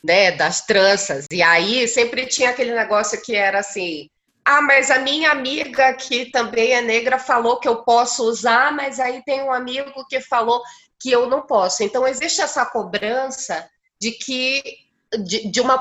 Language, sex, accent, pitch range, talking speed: Portuguese, female, Brazilian, 180-255 Hz, 175 wpm